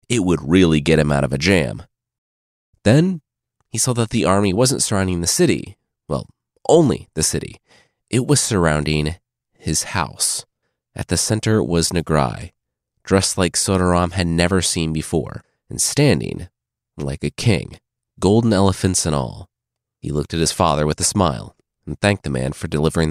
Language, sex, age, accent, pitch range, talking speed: English, male, 30-49, American, 80-110 Hz, 165 wpm